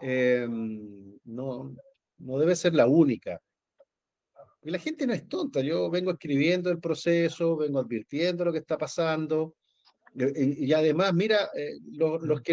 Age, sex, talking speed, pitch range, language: 50-69, male, 155 wpm, 145-210 Hz, Spanish